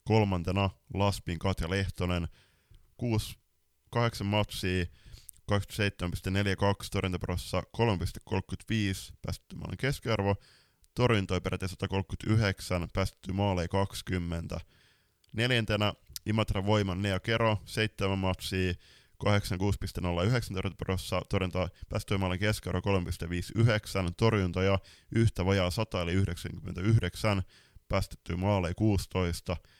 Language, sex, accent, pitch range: Finnish, male, native, 90-110 Hz